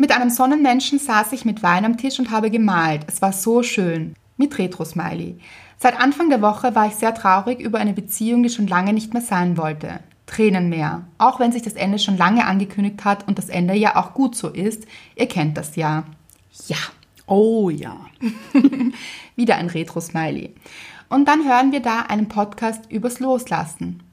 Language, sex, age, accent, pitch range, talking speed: German, female, 20-39, German, 190-245 Hz, 185 wpm